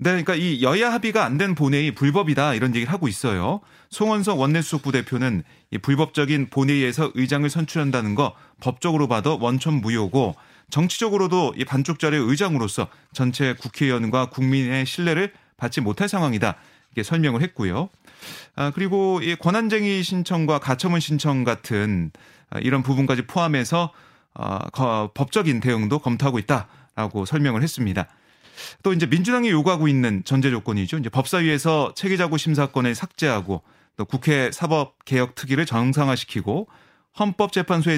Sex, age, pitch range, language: male, 30-49, 125-165 Hz, Korean